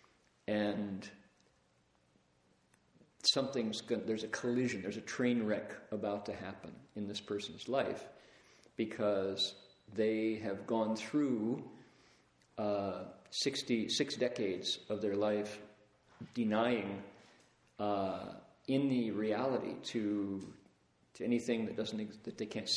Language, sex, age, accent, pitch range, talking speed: English, male, 50-69, American, 105-120 Hz, 110 wpm